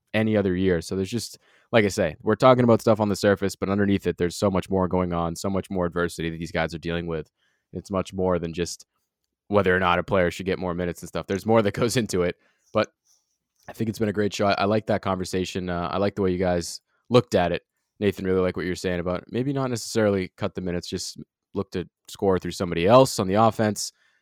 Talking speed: 260 wpm